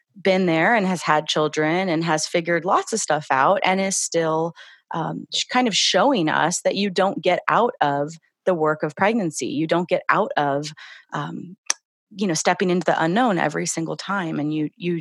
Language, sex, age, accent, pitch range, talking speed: English, female, 30-49, American, 160-205 Hz, 195 wpm